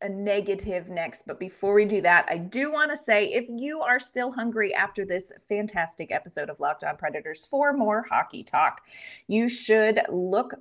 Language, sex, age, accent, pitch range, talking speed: English, female, 30-49, American, 180-240 Hz, 185 wpm